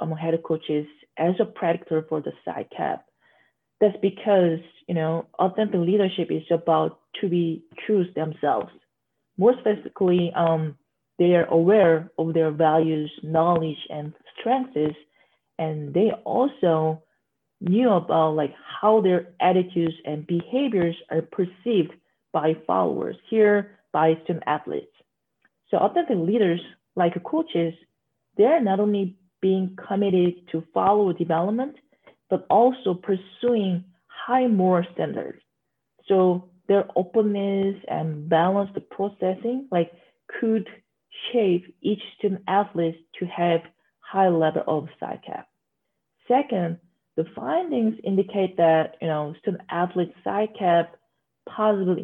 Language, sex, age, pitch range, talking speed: English, female, 30-49, 160-200 Hz, 120 wpm